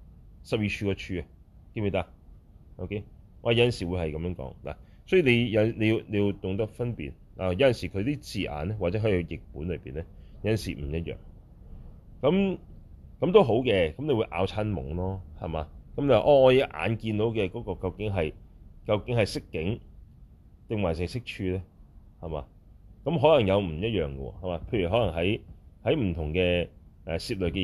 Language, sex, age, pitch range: Chinese, male, 30-49, 80-105 Hz